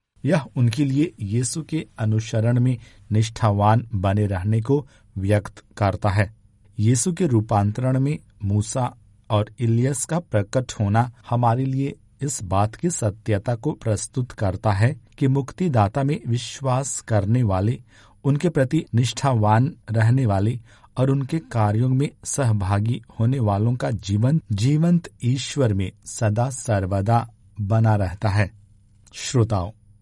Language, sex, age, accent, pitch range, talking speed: Hindi, male, 50-69, native, 105-130 Hz, 125 wpm